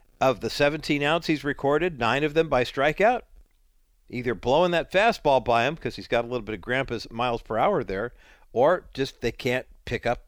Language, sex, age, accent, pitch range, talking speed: English, male, 50-69, American, 105-145 Hz, 200 wpm